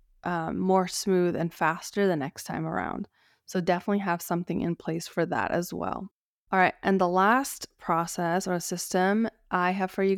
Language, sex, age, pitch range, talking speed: English, female, 20-39, 175-195 Hz, 185 wpm